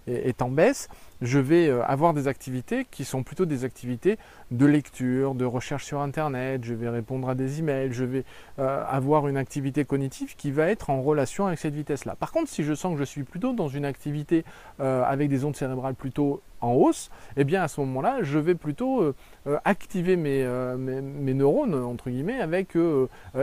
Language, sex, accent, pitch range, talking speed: French, male, French, 130-160 Hz, 200 wpm